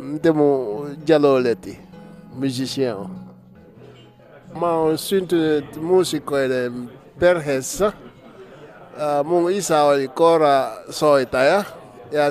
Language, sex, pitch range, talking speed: Finnish, male, 130-155 Hz, 70 wpm